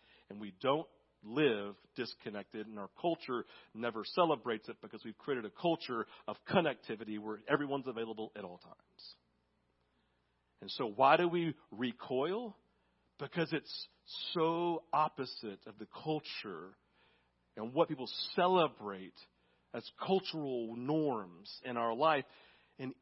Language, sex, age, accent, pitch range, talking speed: English, male, 40-59, American, 100-160 Hz, 125 wpm